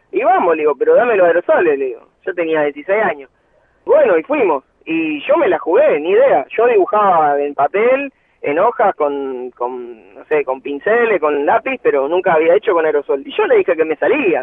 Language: Spanish